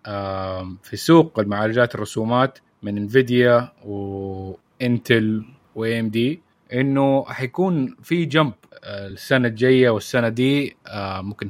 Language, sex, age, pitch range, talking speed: Arabic, male, 20-39, 110-135 Hz, 100 wpm